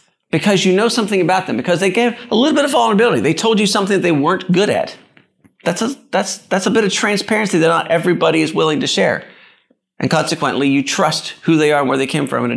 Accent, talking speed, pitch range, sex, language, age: American, 250 wpm, 130-185 Hz, male, English, 30-49